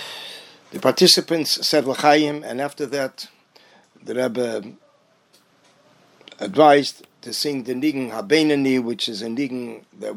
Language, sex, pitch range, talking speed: English, male, 120-145 Hz, 125 wpm